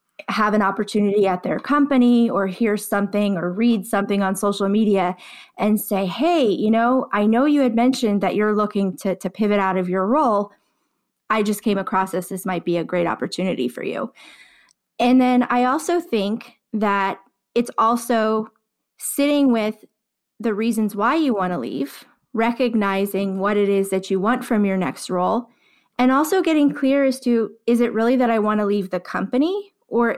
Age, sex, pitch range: 20-39, female, 195-240 Hz